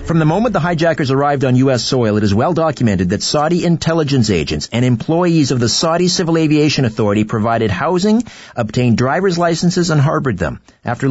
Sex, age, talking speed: male, 50-69, 185 wpm